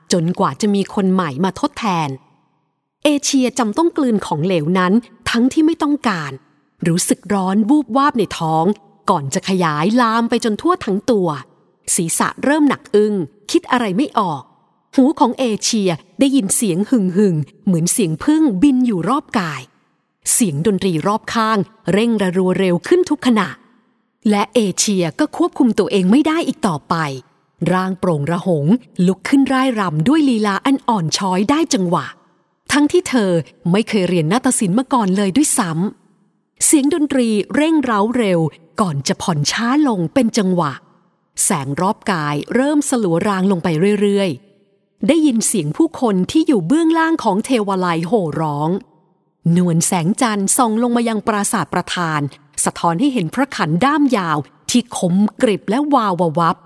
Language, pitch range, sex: English, 175-250 Hz, female